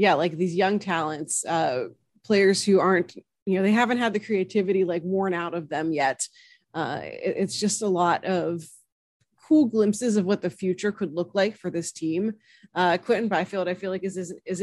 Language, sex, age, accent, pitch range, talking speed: English, female, 30-49, American, 175-210 Hz, 205 wpm